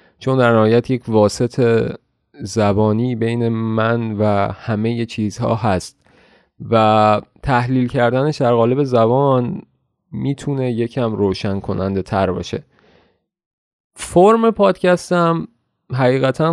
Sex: male